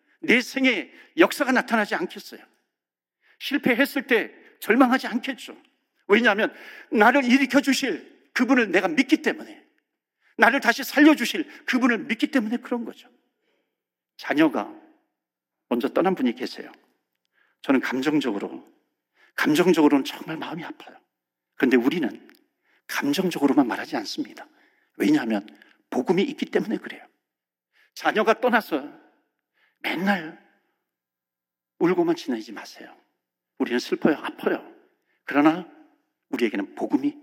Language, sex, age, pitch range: Korean, male, 50-69, 225-310 Hz